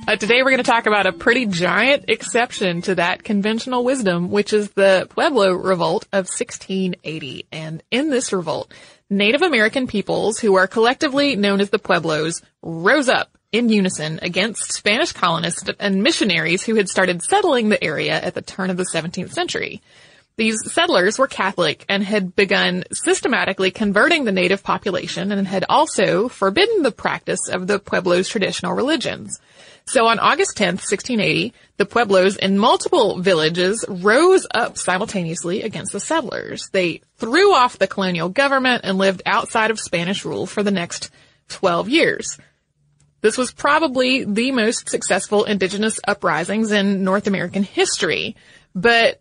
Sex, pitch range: female, 185-235 Hz